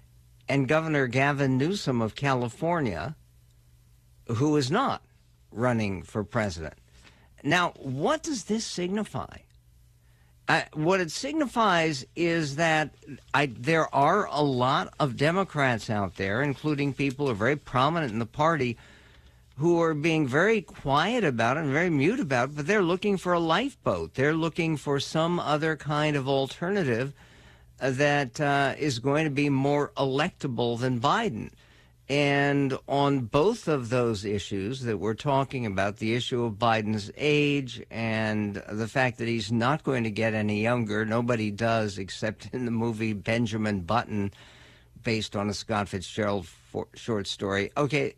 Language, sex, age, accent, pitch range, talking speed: English, male, 50-69, American, 110-150 Hz, 145 wpm